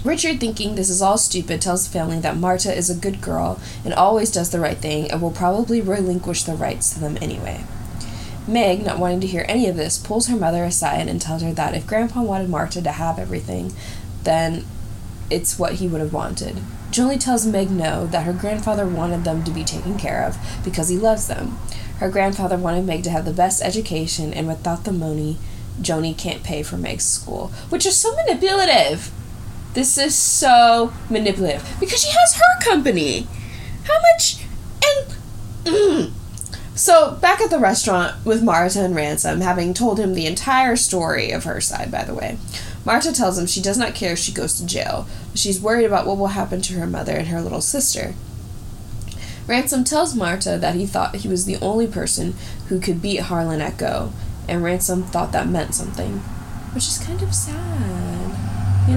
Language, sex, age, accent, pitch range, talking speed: English, female, 10-29, American, 155-220 Hz, 190 wpm